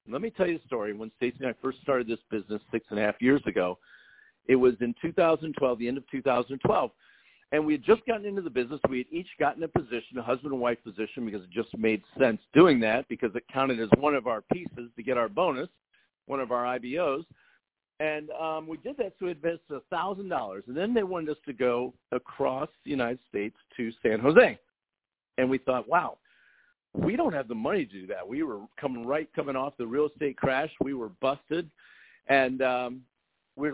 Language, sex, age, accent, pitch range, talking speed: English, male, 50-69, American, 125-170 Hz, 215 wpm